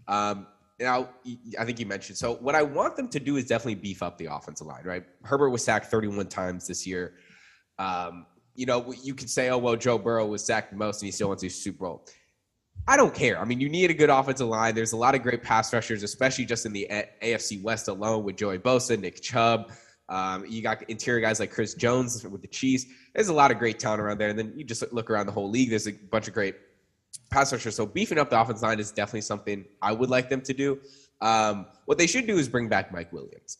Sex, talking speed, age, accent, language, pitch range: male, 245 wpm, 10-29, American, English, 105-130 Hz